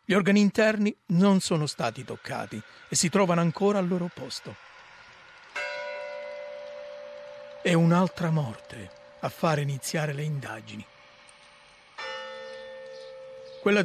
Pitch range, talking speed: 145-195 Hz, 100 wpm